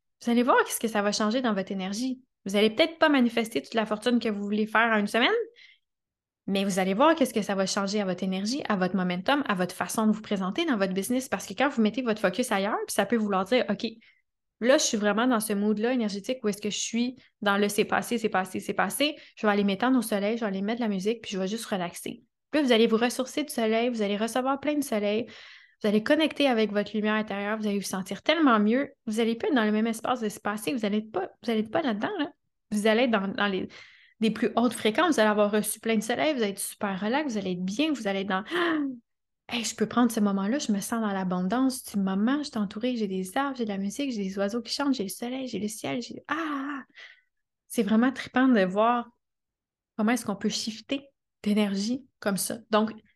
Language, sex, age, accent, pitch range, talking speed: French, female, 20-39, Canadian, 205-255 Hz, 260 wpm